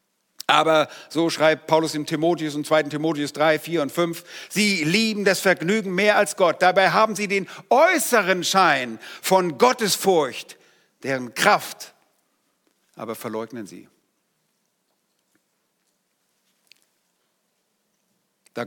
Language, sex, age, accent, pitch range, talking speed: German, male, 50-69, German, 125-170 Hz, 110 wpm